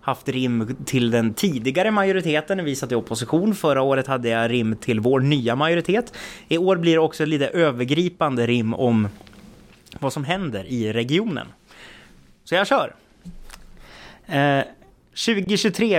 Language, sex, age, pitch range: Swedish, male, 20-39, 120-160 Hz